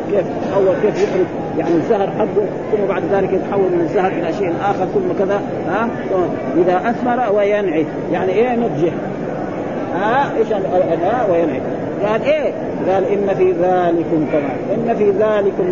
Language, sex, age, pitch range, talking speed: Arabic, male, 40-59, 195-245 Hz, 165 wpm